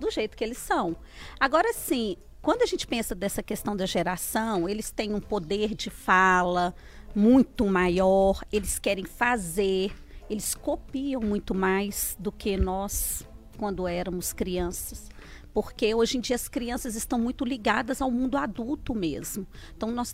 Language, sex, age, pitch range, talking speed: Portuguese, female, 40-59, 200-290 Hz, 150 wpm